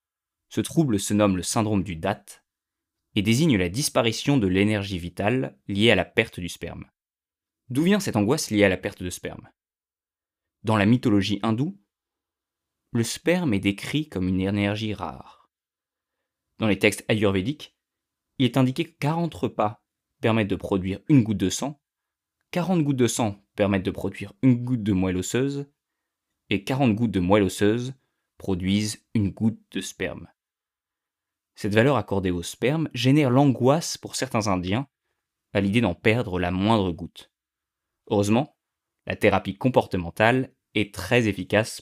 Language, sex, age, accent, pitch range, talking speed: French, male, 20-39, French, 100-130 Hz, 155 wpm